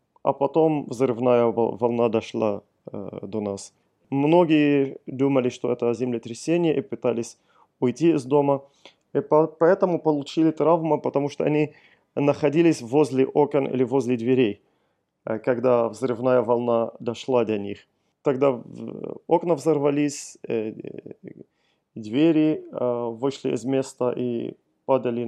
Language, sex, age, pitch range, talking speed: Russian, male, 20-39, 120-145 Hz, 125 wpm